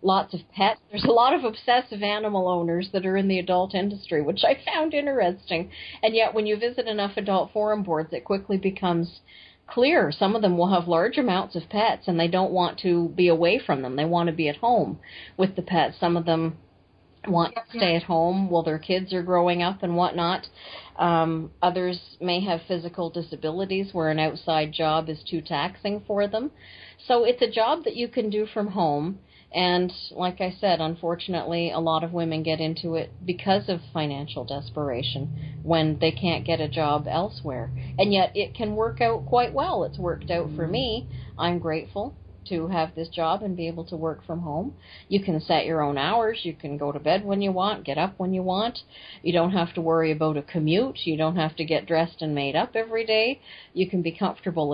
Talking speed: 210 wpm